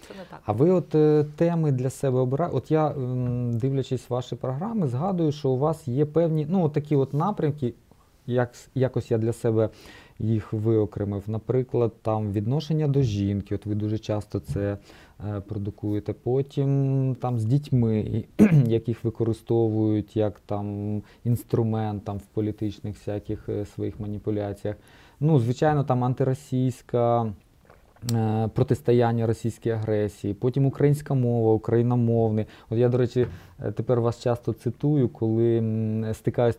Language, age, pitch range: Ukrainian, 20-39, 110-140 Hz